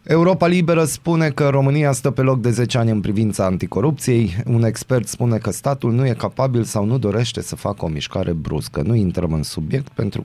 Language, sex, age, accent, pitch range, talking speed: Romanian, male, 30-49, native, 95-130 Hz, 205 wpm